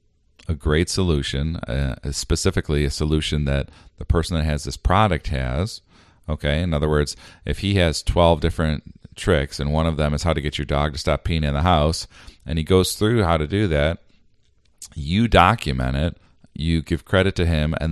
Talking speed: 195 wpm